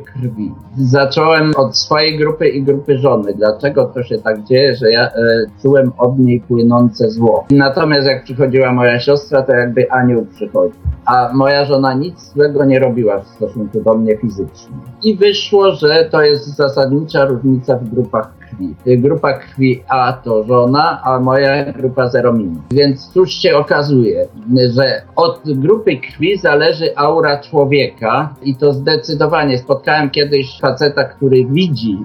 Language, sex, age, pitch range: Polish, male, 50-69, 125-145 Hz